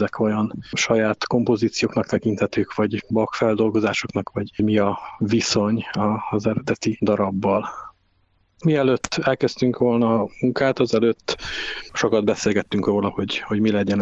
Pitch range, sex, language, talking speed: 105-115 Hz, male, Hungarian, 115 wpm